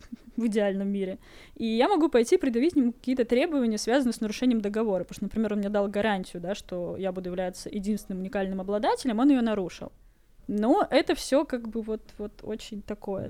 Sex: female